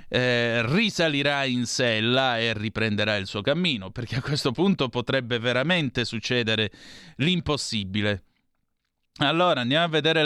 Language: Italian